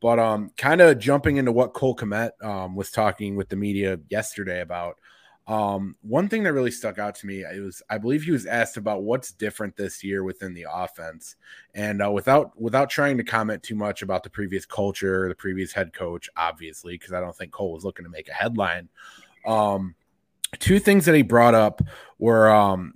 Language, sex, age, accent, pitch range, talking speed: English, male, 20-39, American, 95-120 Hz, 205 wpm